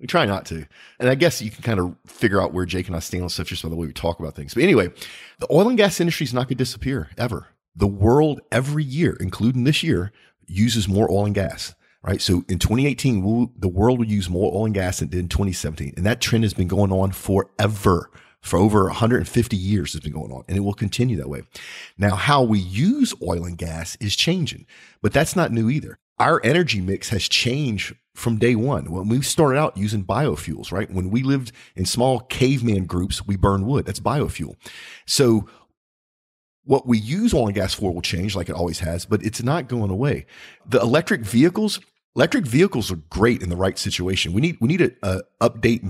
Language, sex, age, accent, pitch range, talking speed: English, male, 40-59, American, 95-135 Hz, 225 wpm